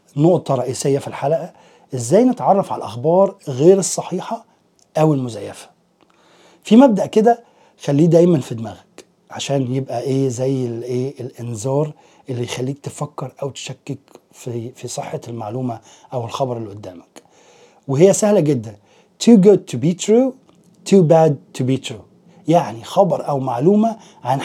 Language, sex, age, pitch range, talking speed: Arabic, male, 30-49, 140-205 Hz, 135 wpm